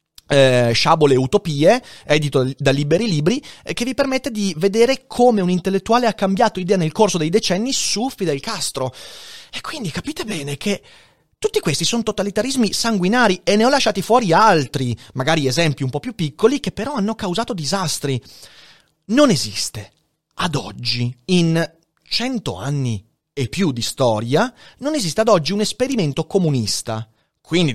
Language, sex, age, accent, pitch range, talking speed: Italian, male, 30-49, native, 140-235 Hz, 160 wpm